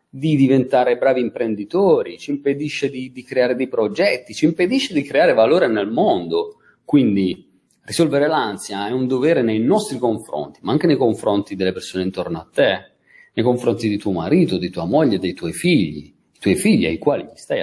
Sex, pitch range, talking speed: male, 105-140 Hz, 180 wpm